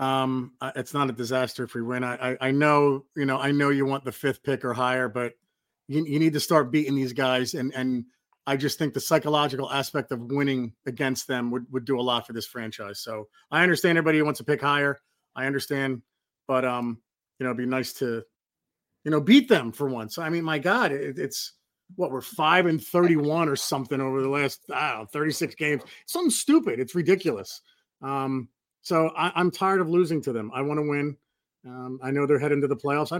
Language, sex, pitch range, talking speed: English, male, 130-155 Hz, 220 wpm